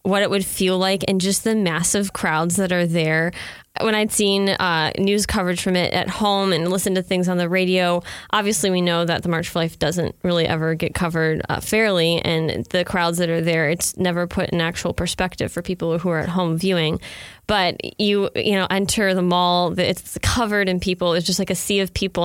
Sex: female